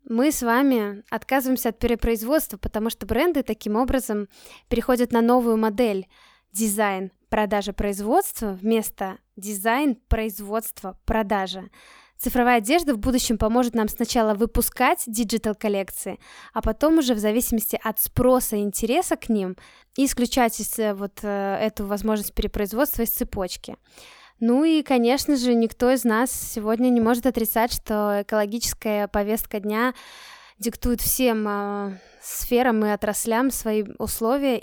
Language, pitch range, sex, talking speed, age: Russian, 215-255 Hz, female, 120 wpm, 10-29